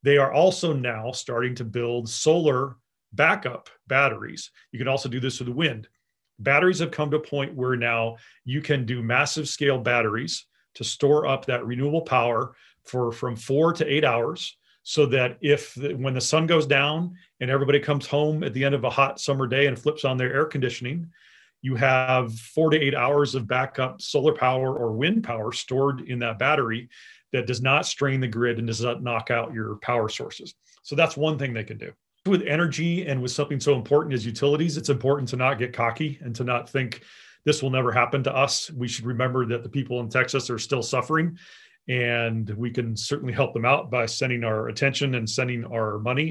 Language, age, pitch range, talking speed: English, 40-59, 120-145 Hz, 205 wpm